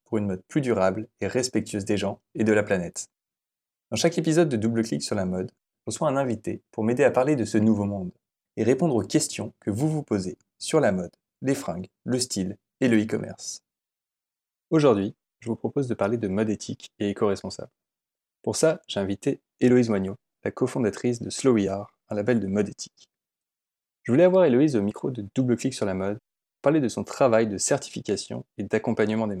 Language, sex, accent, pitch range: French, male, French, 105-130 Hz